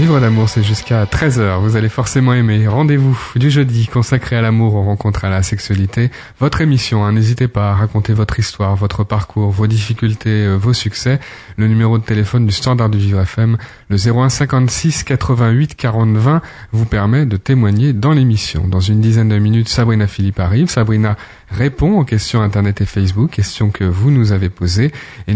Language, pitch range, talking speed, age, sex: French, 100-125 Hz, 185 wpm, 30-49, male